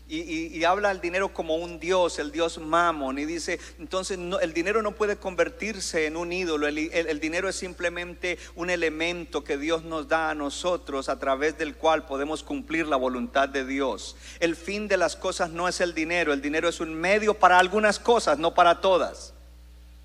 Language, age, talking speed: Spanish, 50-69, 205 wpm